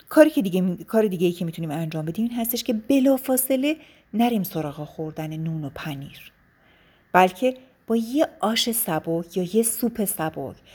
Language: Persian